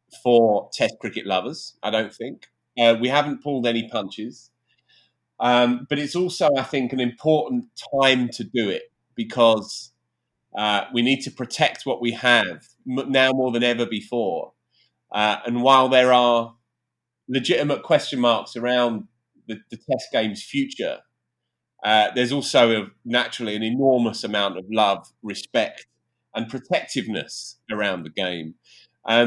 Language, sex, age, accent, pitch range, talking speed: English, male, 30-49, British, 115-150 Hz, 140 wpm